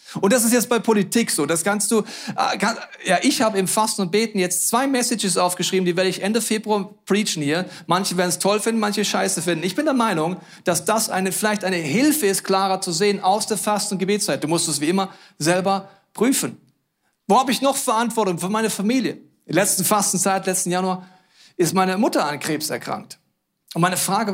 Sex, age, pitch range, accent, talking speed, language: male, 40-59, 155-205 Hz, German, 215 wpm, German